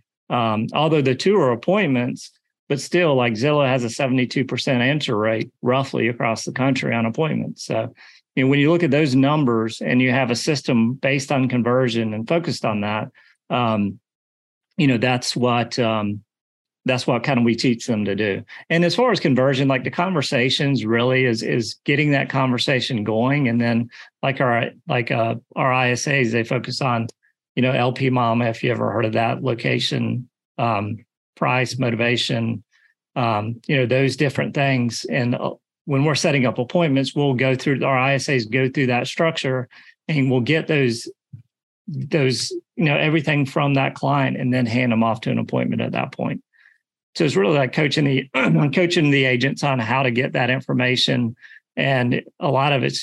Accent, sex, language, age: American, male, English, 40-59